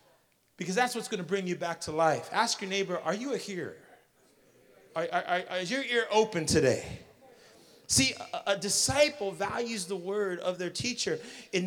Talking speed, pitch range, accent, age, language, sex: 185 wpm, 190-245 Hz, American, 30-49, English, male